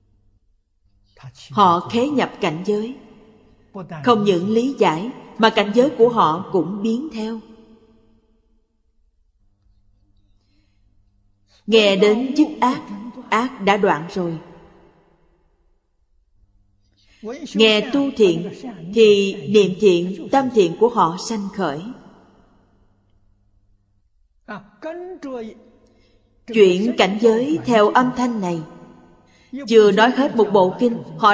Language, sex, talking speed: Vietnamese, female, 100 wpm